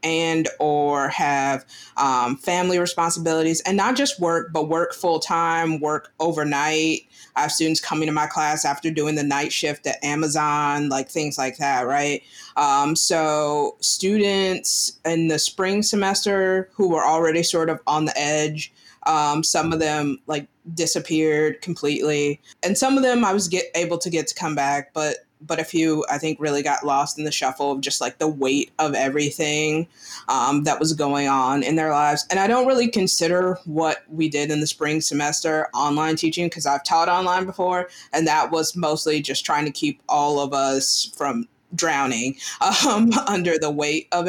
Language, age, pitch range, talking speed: English, 20-39, 150-170 Hz, 180 wpm